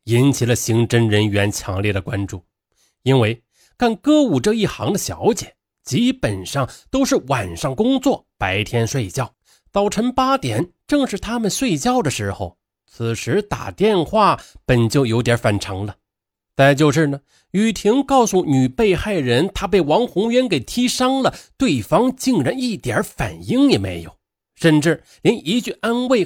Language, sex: Chinese, male